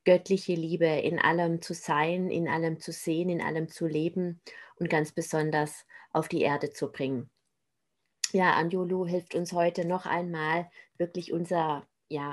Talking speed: 155 wpm